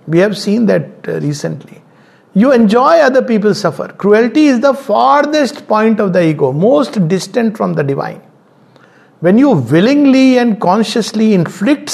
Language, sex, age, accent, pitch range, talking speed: English, male, 60-79, Indian, 155-225 Hz, 145 wpm